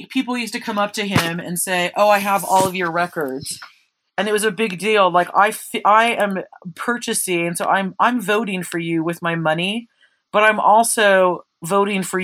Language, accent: English, American